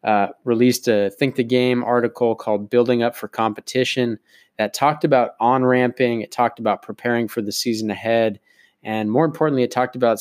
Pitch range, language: 105-125 Hz, English